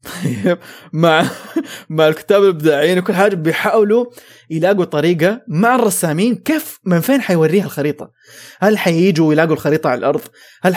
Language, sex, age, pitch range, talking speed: English, male, 20-39, 150-215 Hz, 130 wpm